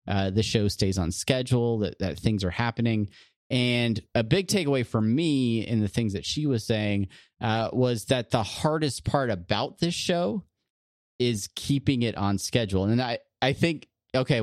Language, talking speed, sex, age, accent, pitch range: English, 180 wpm, male, 30-49, American, 105-130 Hz